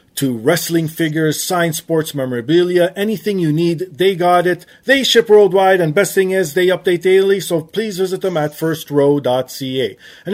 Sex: male